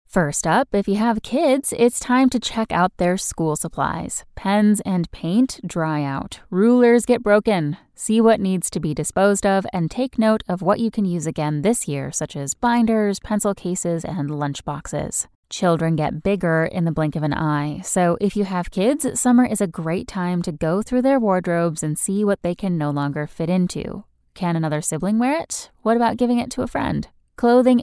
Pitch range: 160-220 Hz